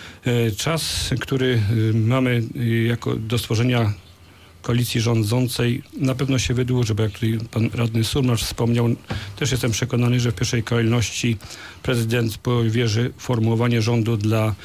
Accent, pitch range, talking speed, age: native, 110-125 Hz, 125 wpm, 40-59